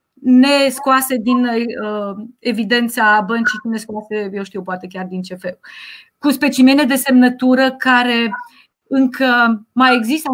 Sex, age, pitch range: female, 30-49, 220-265 Hz